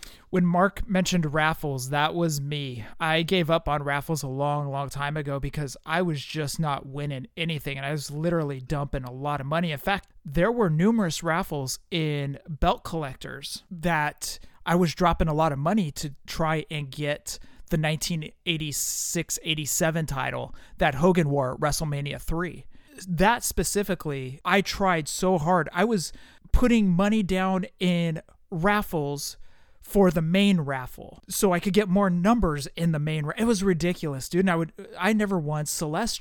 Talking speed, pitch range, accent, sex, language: 170 wpm, 145-185 Hz, American, male, English